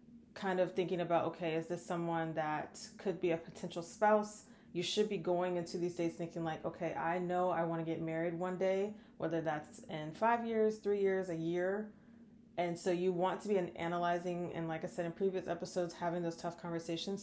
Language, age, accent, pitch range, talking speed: English, 20-39, American, 165-195 Hz, 210 wpm